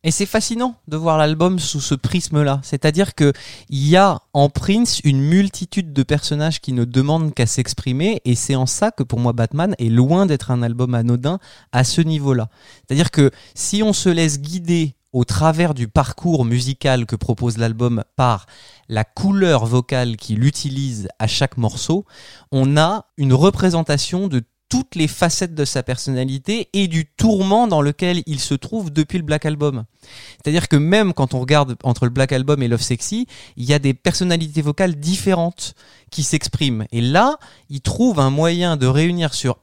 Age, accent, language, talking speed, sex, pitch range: 20-39, French, French, 180 wpm, male, 125-170 Hz